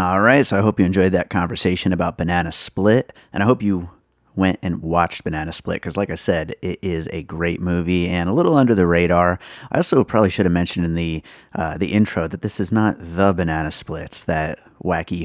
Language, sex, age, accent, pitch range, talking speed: English, male, 30-49, American, 85-105 Hz, 220 wpm